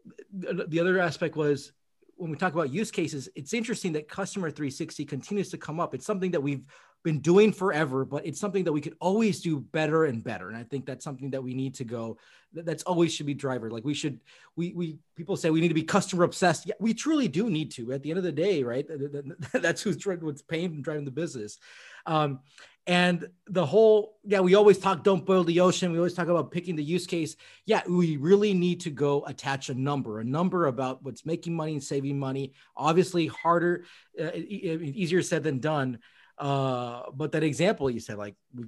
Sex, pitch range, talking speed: male, 140-175 Hz, 215 wpm